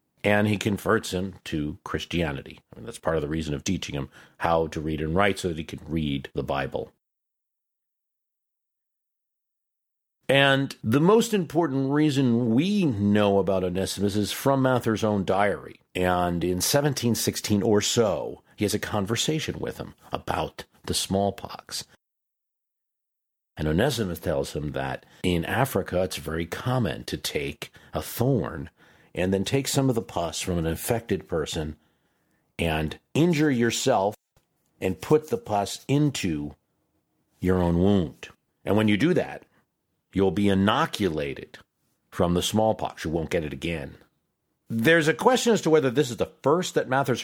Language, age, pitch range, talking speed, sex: English, 50-69, 90-125 Hz, 150 wpm, male